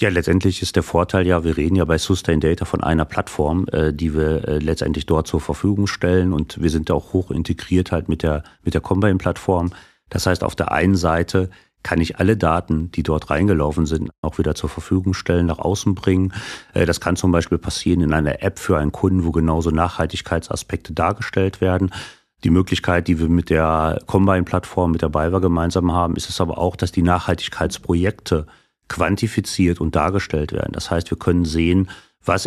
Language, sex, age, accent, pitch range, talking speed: German, male, 40-59, German, 80-95 Hz, 190 wpm